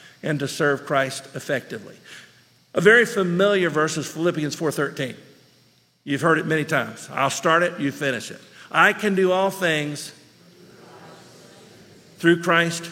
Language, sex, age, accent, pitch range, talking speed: English, male, 50-69, American, 150-195 Hz, 140 wpm